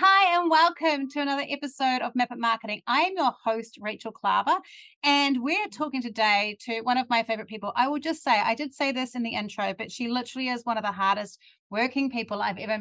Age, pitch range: 30-49, 210-275 Hz